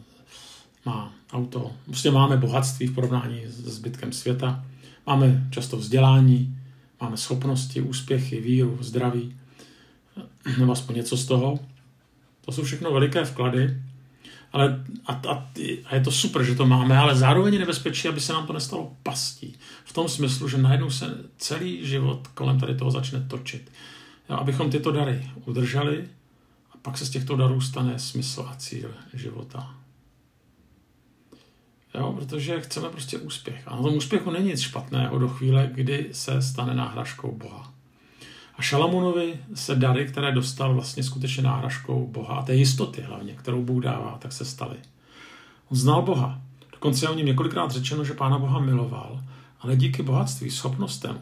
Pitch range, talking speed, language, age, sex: 125-140 Hz, 155 wpm, Czech, 50-69, male